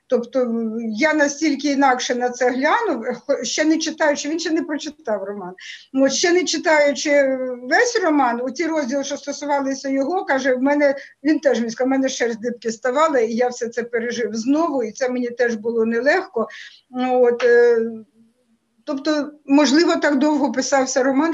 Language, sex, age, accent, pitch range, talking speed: Ukrainian, female, 50-69, native, 270-335 Hz, 160 wpm